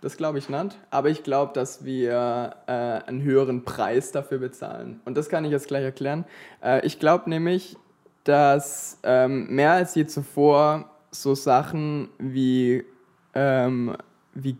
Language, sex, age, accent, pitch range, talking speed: German, male, 20-39, German, 130-140 Hz, 150 wpm